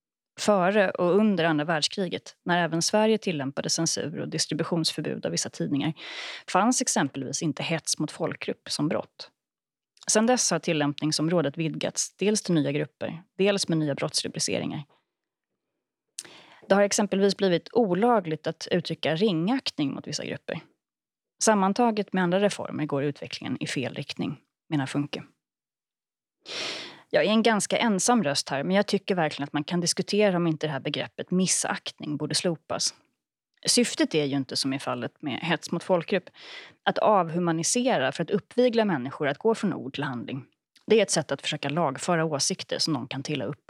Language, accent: Swedish, native